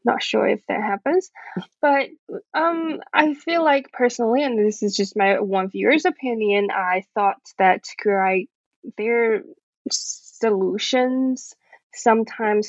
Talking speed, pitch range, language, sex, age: 125 wpm, 210-285 Hz, English, female, 10-29